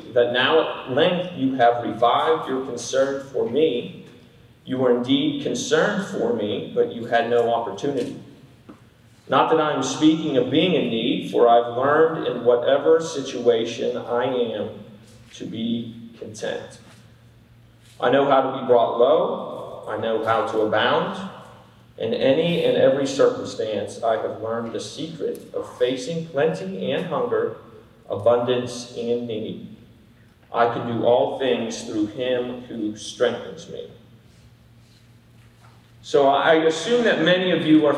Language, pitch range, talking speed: English, 120-155 Hz, 140 wpm